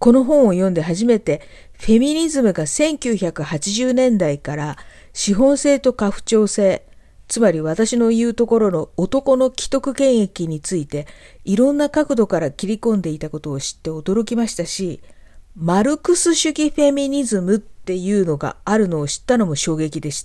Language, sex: Japanese, female